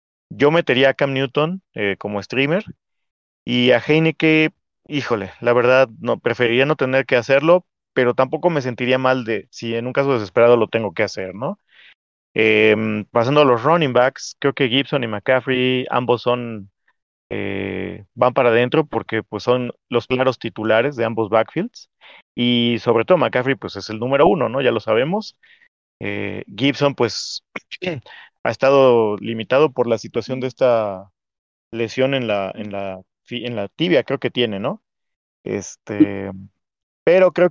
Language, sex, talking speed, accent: Spanish, male, 160 wpm, Mexican